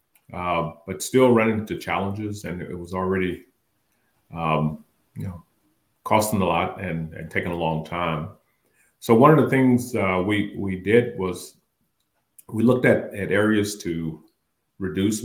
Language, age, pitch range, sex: English, 40-59, 85-110 Hz, male